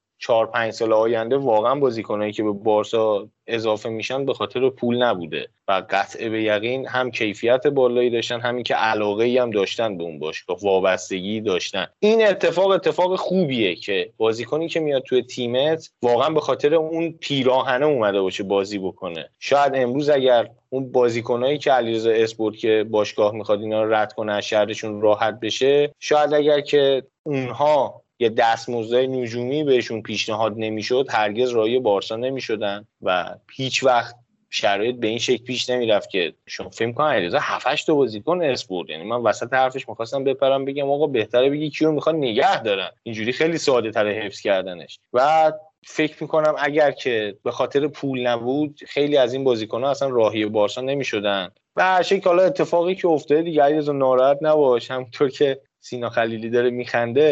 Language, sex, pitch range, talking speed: Persian, male, 110-145 Hz, 160 wpm